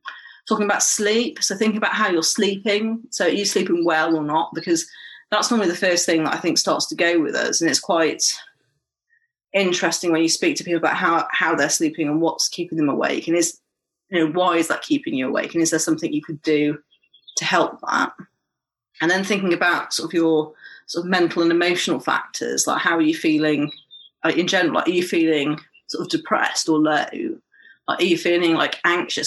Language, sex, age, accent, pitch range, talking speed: English, female, 30-49, British, 160-210 Hz, 210 wpm